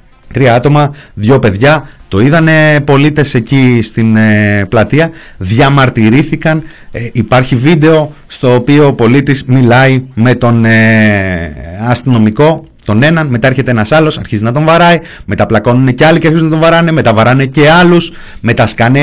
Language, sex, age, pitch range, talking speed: Greek, male, 30-49, 125-175 Hz, 145 wpm